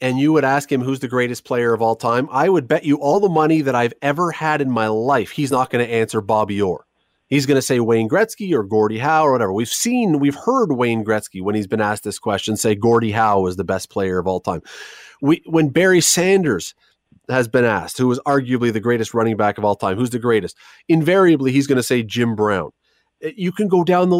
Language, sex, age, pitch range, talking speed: English, male, 30-49, 110-145 Hz, 245 wpm